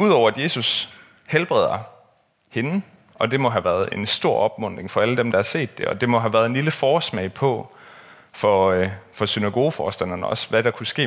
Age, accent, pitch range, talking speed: 30-49, native, 100-135 Hz, 200 wpm